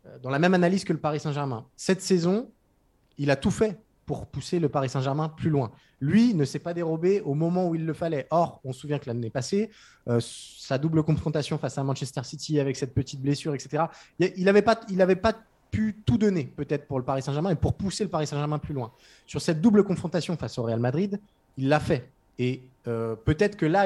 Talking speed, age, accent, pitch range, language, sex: 225 wpm, 20-39, French, 130-170 Hz, French, male